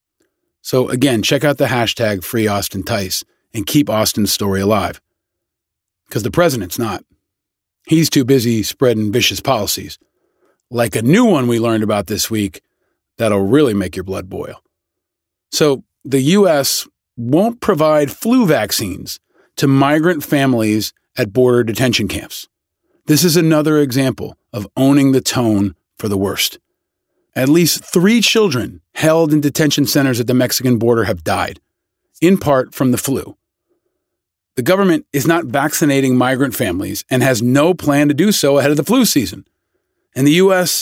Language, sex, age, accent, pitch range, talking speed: English, male, 40-59, American, 115-155 Hz, 155 wpm